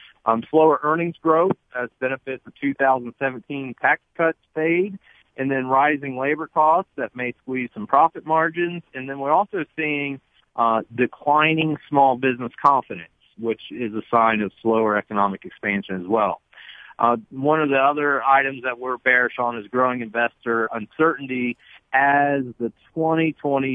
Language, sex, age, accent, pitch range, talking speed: English, male, 50-69, American, 115-140 Hz, 150 wpm